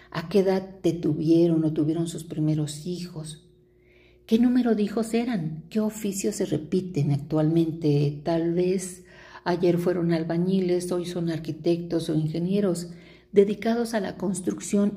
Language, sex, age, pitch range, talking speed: Spanish, female, 50-69, 160-195 Hz, 135 wpm